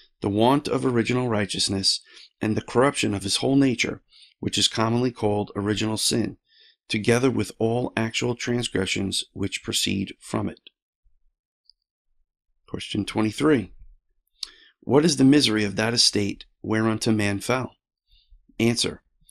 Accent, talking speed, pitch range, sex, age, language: American, 125 wpm, 100-125 Hz, male, 40-59, English